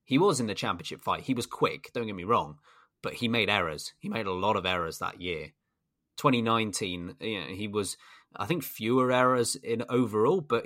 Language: English